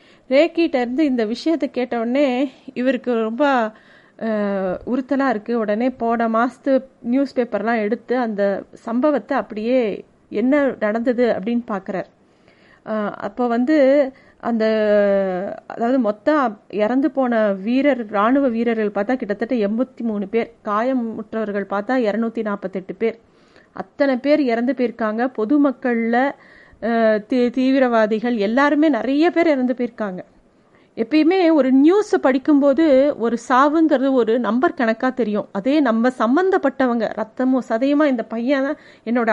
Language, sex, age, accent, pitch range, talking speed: Tamil, female, 30-49, native, 225-275 Hz, 100 wpm